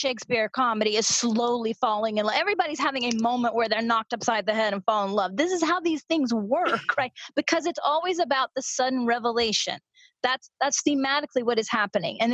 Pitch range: 215-280 Hz